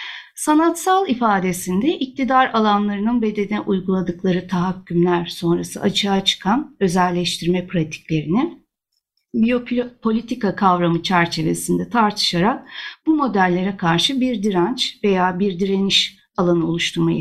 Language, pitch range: Turkish, 180-240 Hz